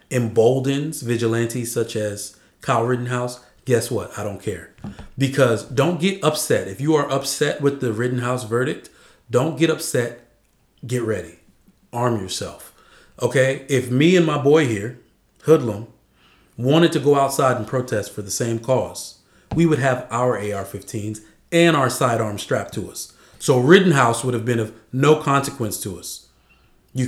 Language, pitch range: English, 115-155 Hz